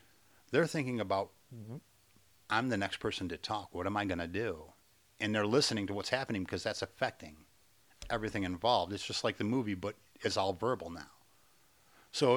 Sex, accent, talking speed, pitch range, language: male, American, 180 wpm, 100-120 Hz, English